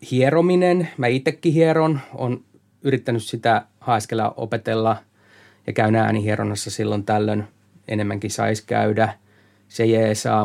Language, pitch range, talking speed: Finnish, 105-125 Hz, 110 wpm